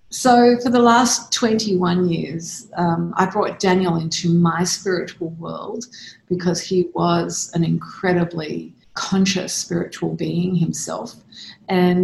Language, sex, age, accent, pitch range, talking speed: English, female, 50-69, Australian, 165-185 Hz, 120 wpm